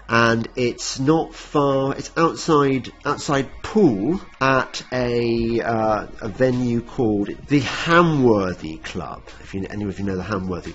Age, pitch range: 40-59, 95-135 Hz